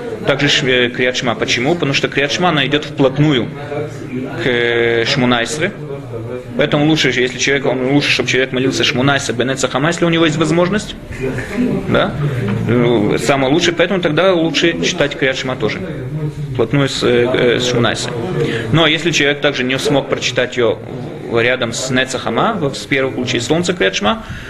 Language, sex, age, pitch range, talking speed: Russian, male, 20-39, 120-150 Hz, 140 wpm